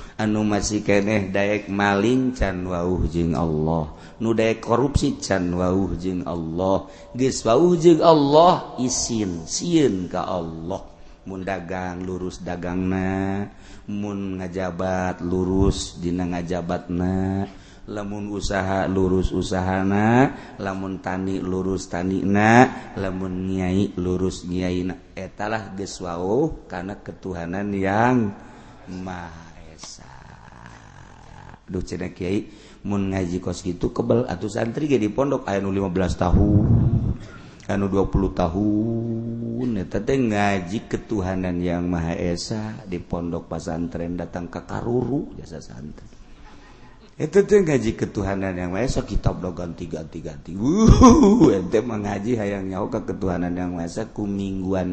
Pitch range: 90-105 Hz